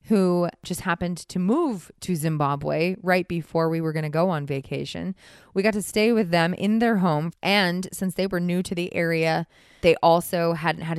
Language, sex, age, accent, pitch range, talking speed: English, female, 20-39, American, 150-180 Hz, 200 wpm